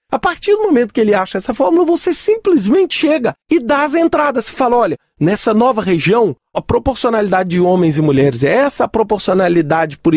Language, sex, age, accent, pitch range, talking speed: Portuguese, male, 40-59, Brazilian, 175-265 Hz, 195 wpm